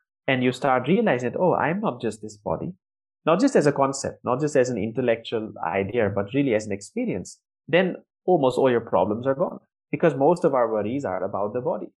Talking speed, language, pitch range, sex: 215 wpm, Hindi, 105-145 Hz, male